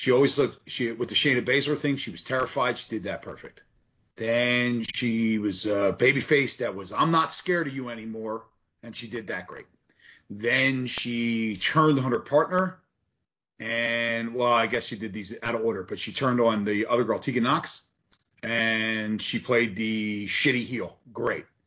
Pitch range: 110-130 Hz